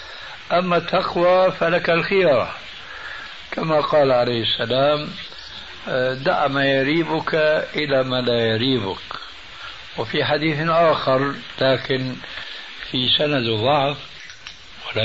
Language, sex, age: Arabic, male, 60-79